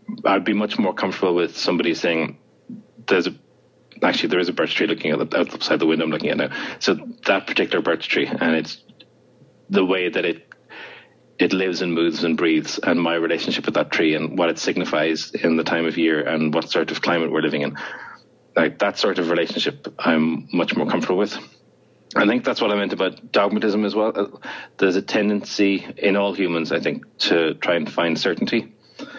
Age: 30-49